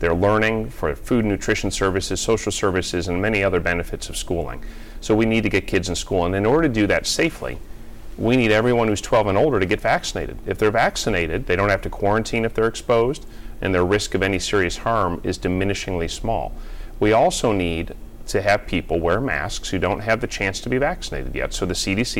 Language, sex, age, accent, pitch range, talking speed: English, male, 40-59, American, 90-115 Hz, 220 wpm